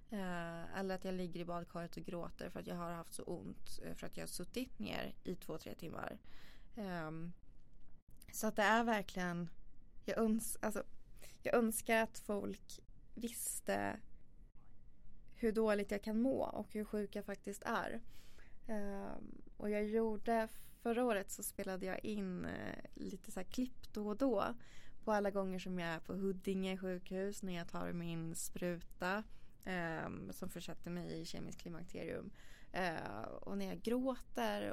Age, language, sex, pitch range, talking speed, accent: 20-39, Swedish, female, 175-215 Hz, 160 wpm, native